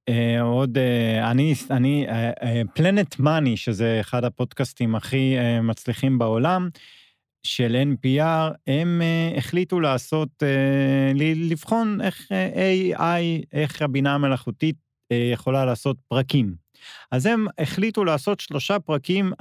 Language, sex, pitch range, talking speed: Hebrew, male, 125-170 Hz, 95 wpm